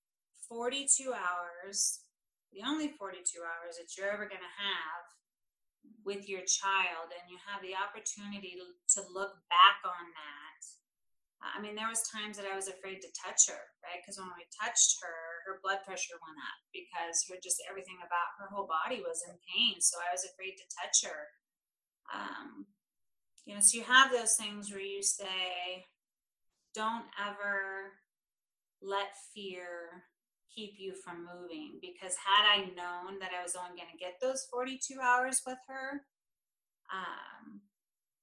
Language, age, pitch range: English, 30-49, 175-205 Hz